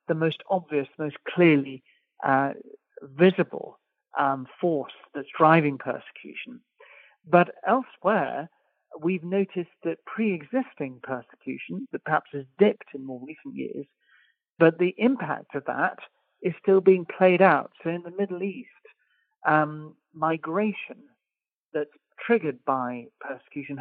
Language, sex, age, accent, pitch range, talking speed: English, male, 50-69, British, 145-180 Hz, 125 wpm